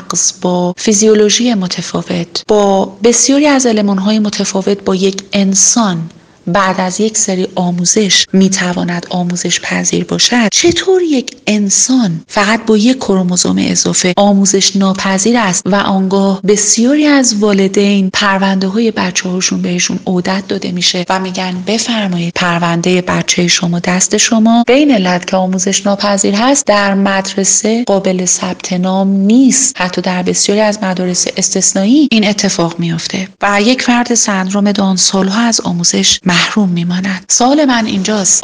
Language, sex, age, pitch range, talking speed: Persian, female, 30-49, 180-220 Hz, 130 wpm